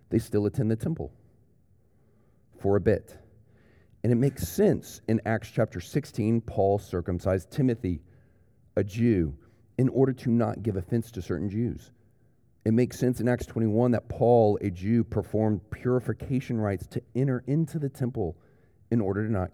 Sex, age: male, 40-59